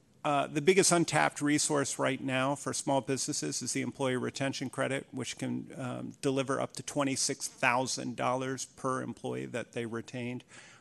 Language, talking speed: English, 165 wpm